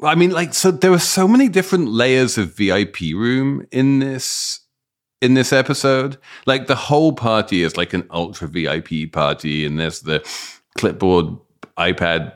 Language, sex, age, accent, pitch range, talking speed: English, male, 30-49, British, 90-125 Hz, 155 wpm